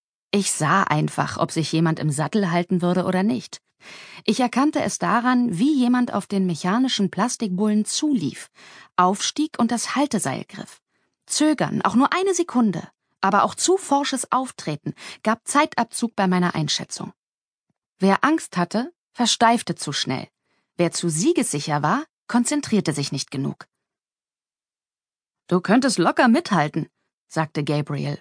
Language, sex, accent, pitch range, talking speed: German, female, German, 160-235 Hz, 135 wpm